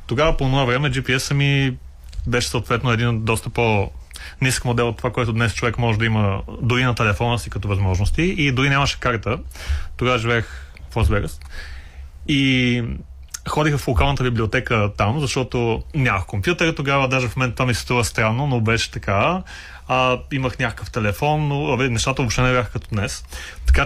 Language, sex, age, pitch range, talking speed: Bulgarian, male, 30-49, 105-130 Hz, 170 wpm